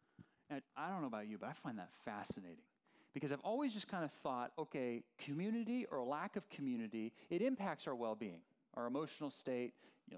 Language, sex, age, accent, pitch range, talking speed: English, male, 40-59, American, 125-185 Hz, 190 wpm